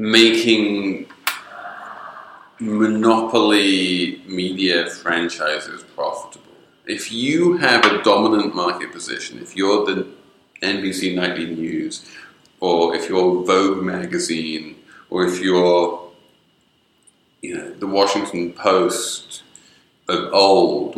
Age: 30-49